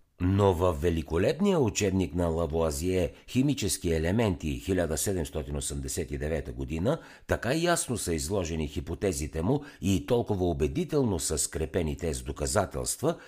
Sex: male